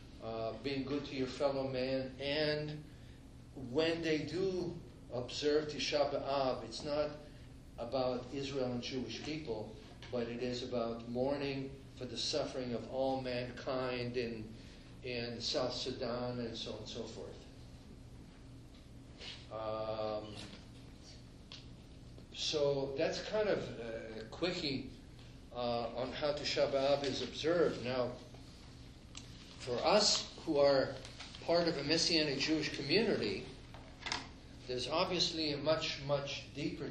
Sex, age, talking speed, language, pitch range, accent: male, 50-69, 120 wpm, English, 120-145 Hz, American